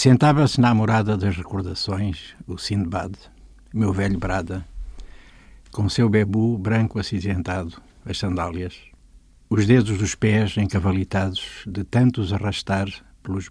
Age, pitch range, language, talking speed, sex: 60-79, 95-110 Hz, Portuguese, 115 wpm, male